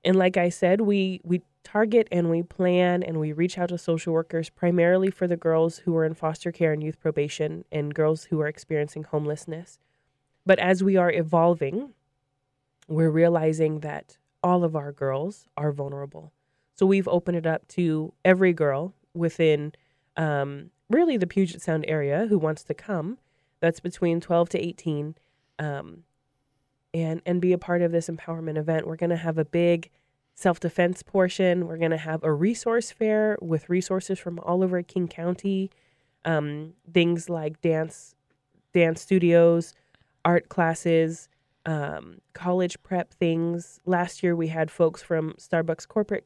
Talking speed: 160 wpm